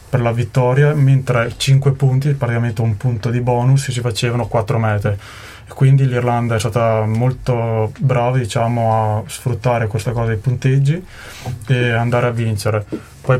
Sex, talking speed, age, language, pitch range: male, 150 wpm, 20-39, Italian, 110-125 Hz